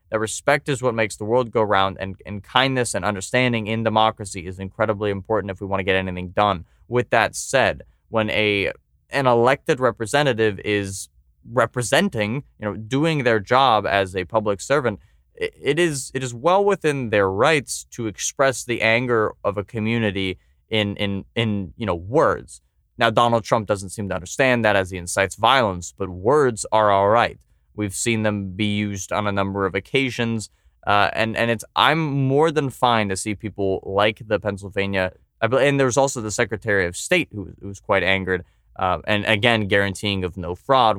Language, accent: English, American